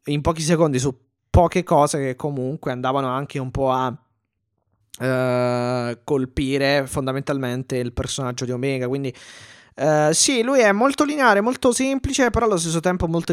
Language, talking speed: Italian, 145 wpm